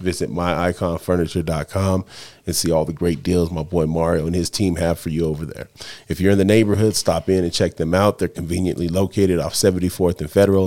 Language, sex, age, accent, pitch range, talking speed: English, male, 30-49, American, 85-100 Hz, 210 wpm